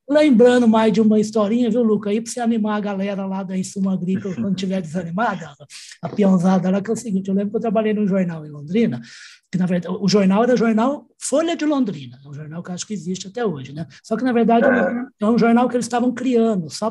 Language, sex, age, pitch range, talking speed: Portuguese, male, 20-39, 185-235 Hz, 245 wpm